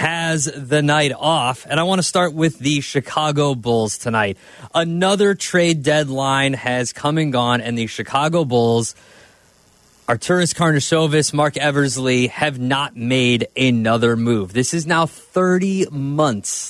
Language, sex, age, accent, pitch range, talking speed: English, male, 20-39, American, 125-165 Hz, 140 wpm